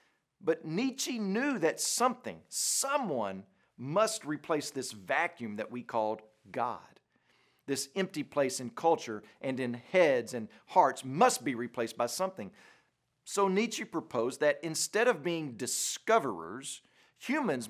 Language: English